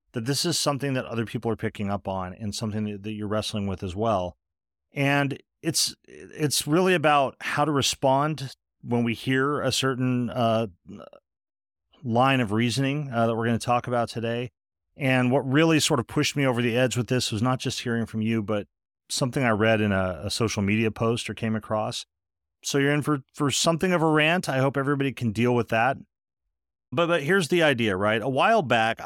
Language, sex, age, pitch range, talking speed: English, male, 40-59, 105-135 Hz, 205 wpm